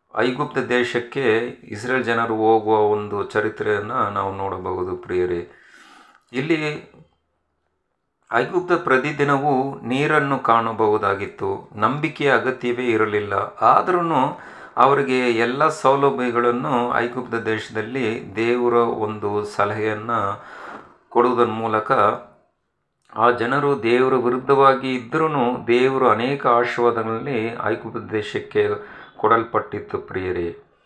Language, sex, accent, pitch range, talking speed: Kannada, male, native, 110-140 Hz, 80 wpm